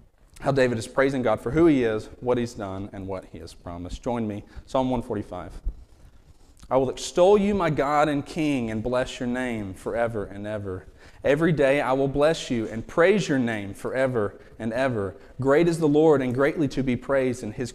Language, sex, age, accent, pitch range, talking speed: English, male, 40-59, American, 110-145 Hz, 205 wpm